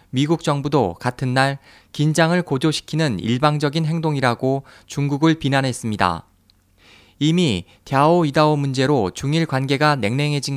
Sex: male